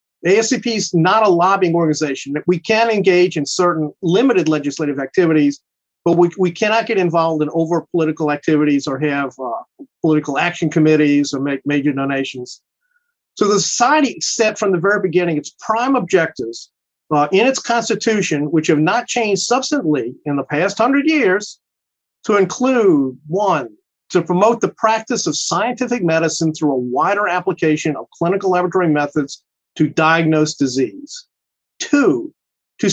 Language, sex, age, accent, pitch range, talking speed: English, male, 50-69, American, 150-225 Hz, 150 wpm